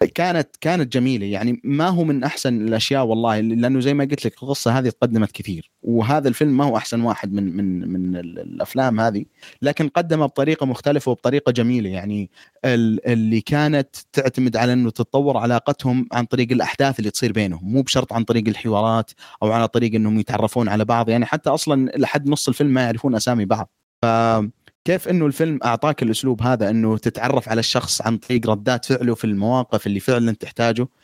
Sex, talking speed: male, 180 wpm